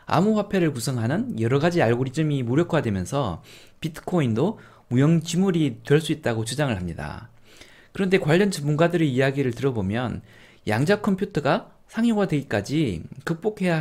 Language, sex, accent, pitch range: Korean, male, native, 115-180 Hz